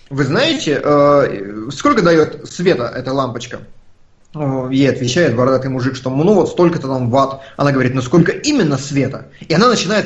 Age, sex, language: 20-39, male, Russian